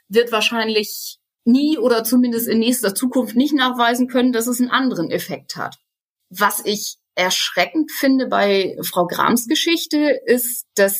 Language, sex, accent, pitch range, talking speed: German, female, German, 215-275 Hz, 145 wpm